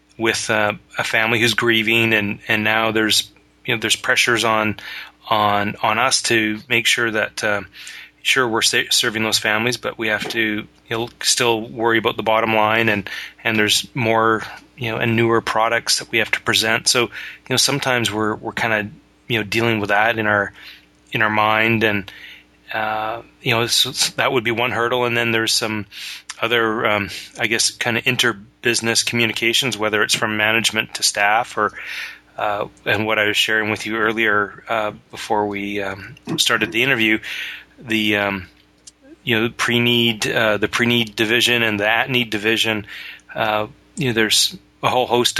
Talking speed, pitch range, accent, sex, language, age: 185 wpm, 105-115 Hz, American, male, English, 30-49